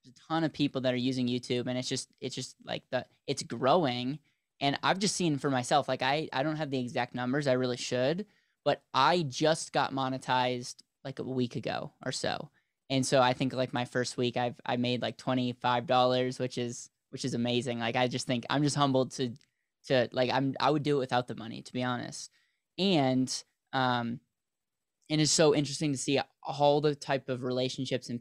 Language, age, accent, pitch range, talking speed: English, 10-29, American, 125-145 Hz, 215 wpm